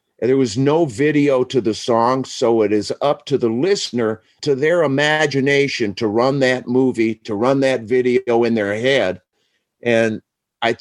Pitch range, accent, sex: 110-140 Hz, American, male